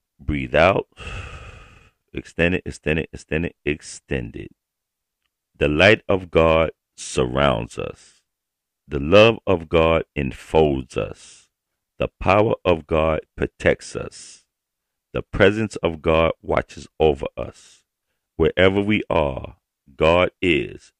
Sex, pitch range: male, 75-90 Hz